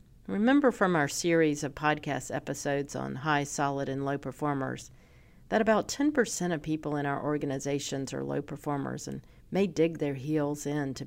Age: 50-69